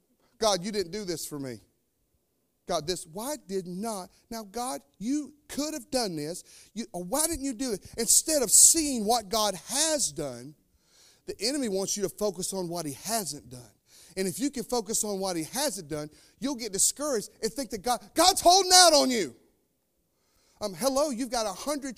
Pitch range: 185-275 Hz